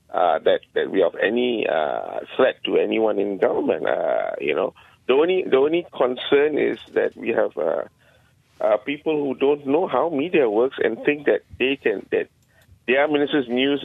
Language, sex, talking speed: English, male, 180 wpm